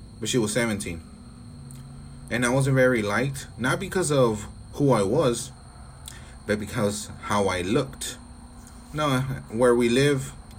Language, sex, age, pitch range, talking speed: English, male, 30-49, 100-130 Hz, 145 wpm